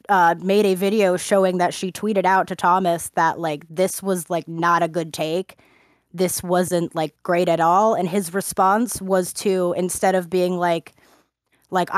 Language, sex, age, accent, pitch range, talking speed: English, female, 20-39, American, 175-215 Hz, 180 wpm